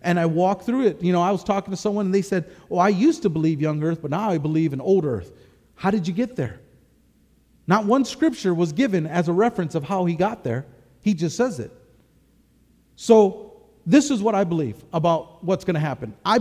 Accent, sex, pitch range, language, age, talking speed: American, male, 175-230 Hz, English, 40-59, 230 wpm